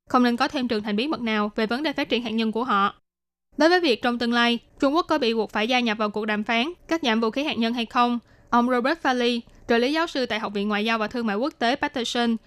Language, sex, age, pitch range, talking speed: Vietnamese, female, 20-39, 220-270 Hz, 300 wpm